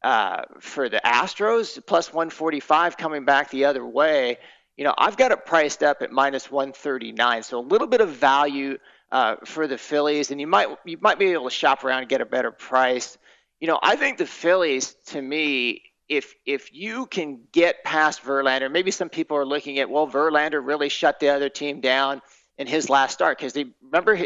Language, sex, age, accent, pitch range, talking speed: English, male, 40-59, American, 135-170 Hz, 200 wpm